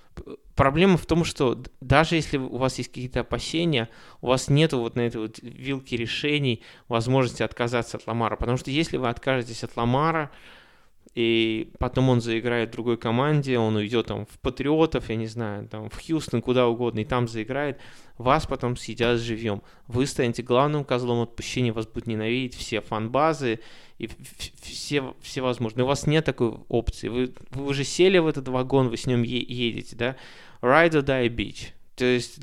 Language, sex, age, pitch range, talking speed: Russian, male, 20-39, 115-135 Hz, 175 wpm